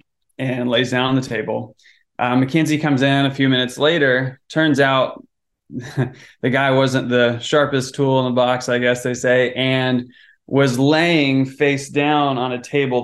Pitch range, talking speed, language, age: 120-140 Hz, 175 wpm, English, 20-39